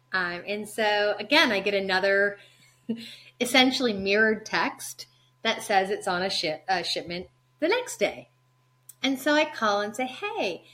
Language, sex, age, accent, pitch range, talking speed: English, female, 30-49, American, 165-235 Hz, 150 wpm